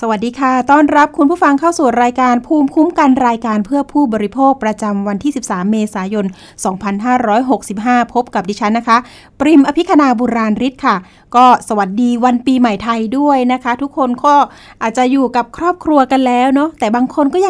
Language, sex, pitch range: Thai, female, 220-270 Hz